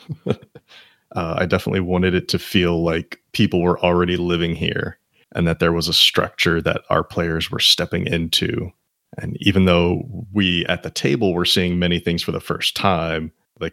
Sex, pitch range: male, 85-100 Hz